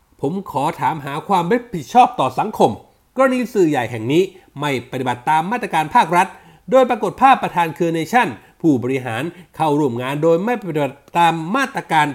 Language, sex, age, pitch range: Thai, male, 60-79, 145-210 Hz